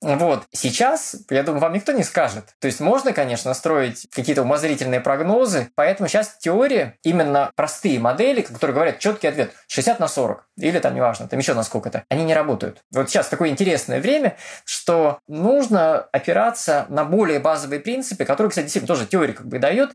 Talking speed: 180 wpm